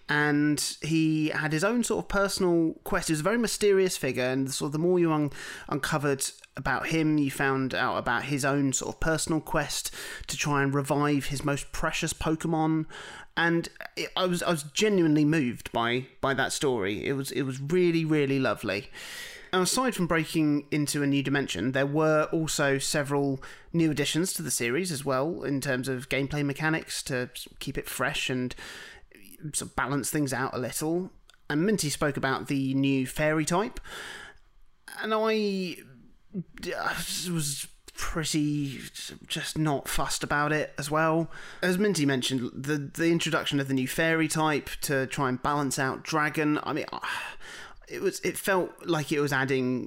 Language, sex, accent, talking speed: English, male, British, 170 wpm